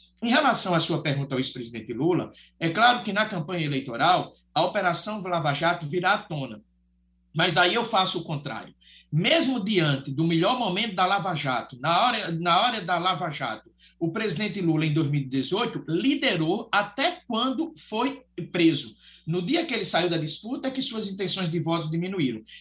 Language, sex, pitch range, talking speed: Portuguese, male, 160-220 Hz, 175 wpm